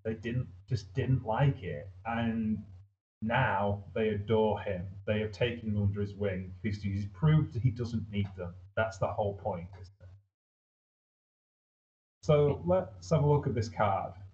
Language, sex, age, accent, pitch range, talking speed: English, male, 30-49, British, 100-120 Hz, 165 wpm